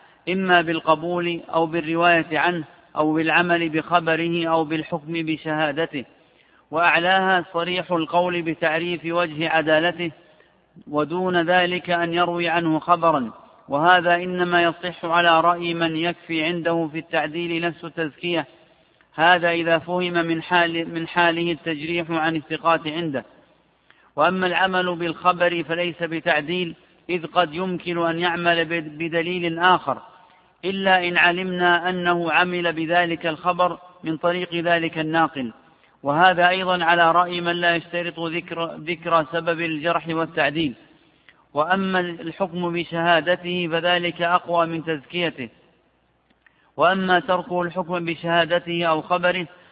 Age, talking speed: 50-69, 110 wpm